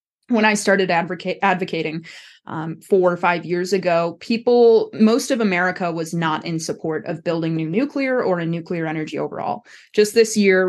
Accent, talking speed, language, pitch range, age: American, 175 wpm, English, 175-220 Hz, 20-39